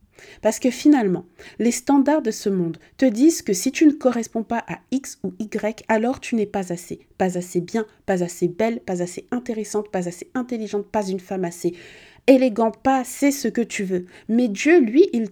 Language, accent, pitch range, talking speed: French, French, 185-245 Hz, 205 wpm